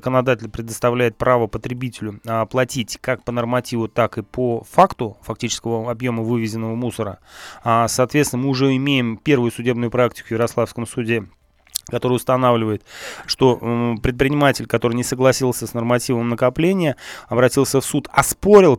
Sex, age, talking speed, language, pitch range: male, 20-39, 130 wpm, Russian, 115-140 Hz